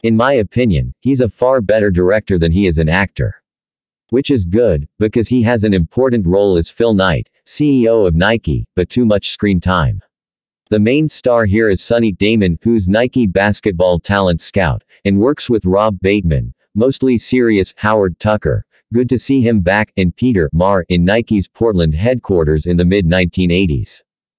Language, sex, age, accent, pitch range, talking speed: English, male, 40-59, American, 90-115 Hz, 170 wpm